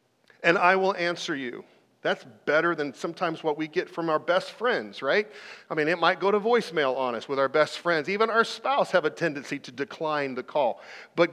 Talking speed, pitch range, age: 215 wpm, 155-215 Hz, 40-59